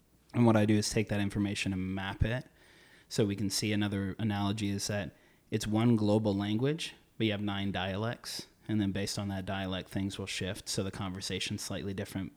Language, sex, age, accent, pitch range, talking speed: English, male, 30-49, American, 95-110 Hz, 205 wpm